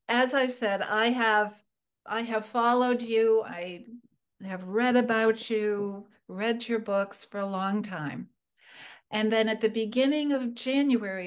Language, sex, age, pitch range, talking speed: English, female, 60-79, 200-235 Hz, 150 wpm